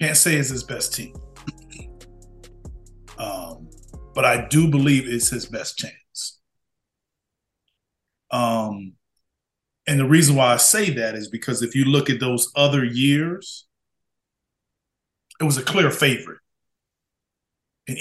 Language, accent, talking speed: English, American, 125 wpm